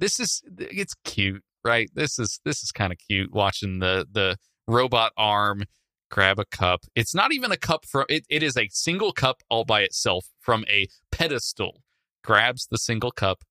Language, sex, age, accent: English, male, 20-39, American